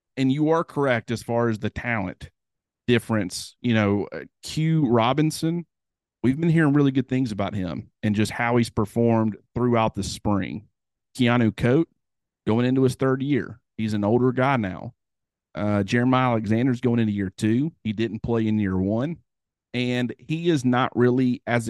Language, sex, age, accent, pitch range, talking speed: English, male, 40-59, American, 105-130 Hz, 170 wpm